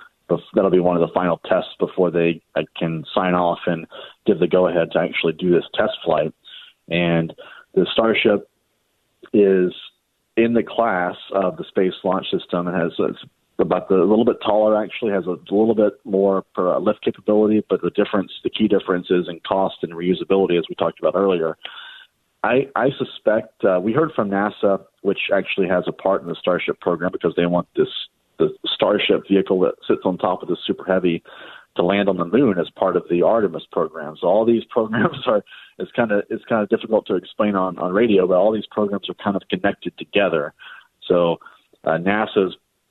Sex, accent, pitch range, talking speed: male, American, 85-100 Hz, 200 wpm